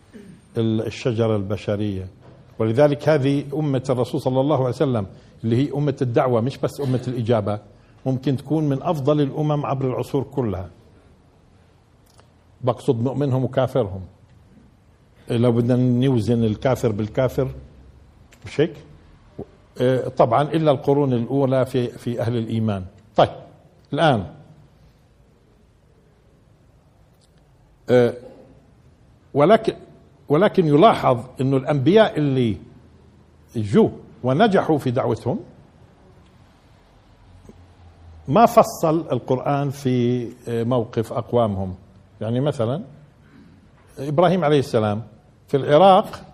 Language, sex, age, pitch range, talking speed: Arabic, male, 50-69, 110-145 Hz, 90 wpm